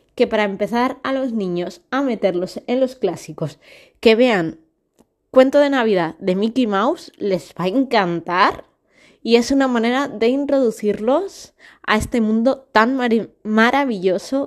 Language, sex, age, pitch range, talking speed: Spanish, female, 20-39, 210-270 Hz, 140 wpm